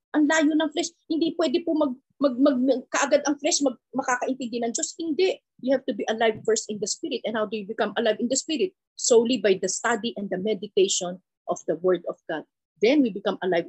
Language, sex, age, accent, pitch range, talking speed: Filipino, female, 40-59, native, 195-245 Hz, 230 wpm